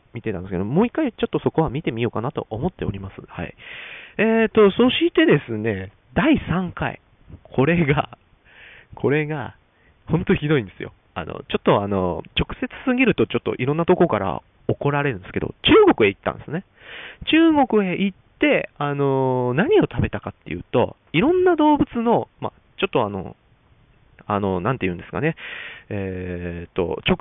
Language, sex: Japanese, male